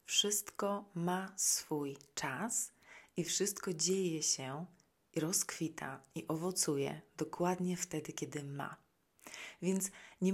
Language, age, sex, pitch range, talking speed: Polish, 30-49, female, 150-180 Hz, 105 wpm